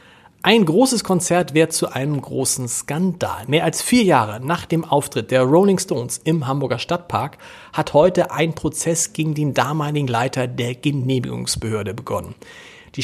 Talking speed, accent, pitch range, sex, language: 150 wpm, German, 130-175 Hz, male, German